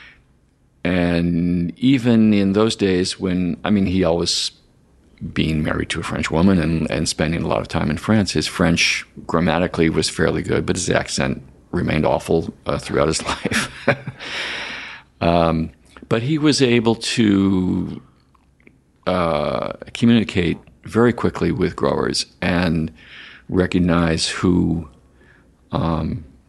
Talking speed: 125 wpm